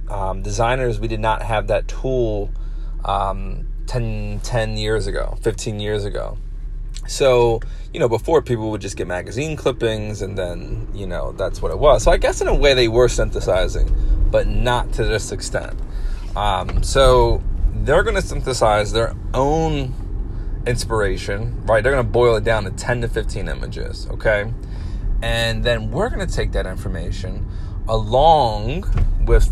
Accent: American